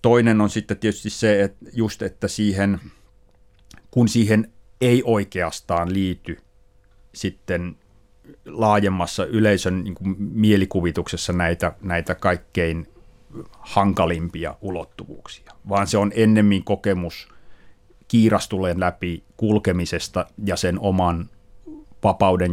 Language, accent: Finnish, native